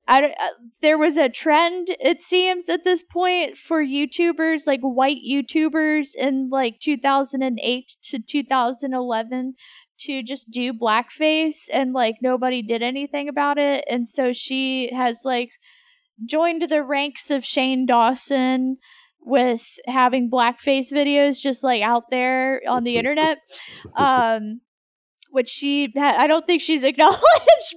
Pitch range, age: 255-335 Hz, 10-29